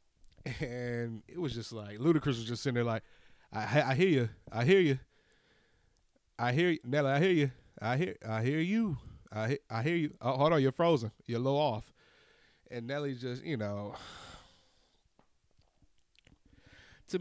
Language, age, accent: English, 30-49, American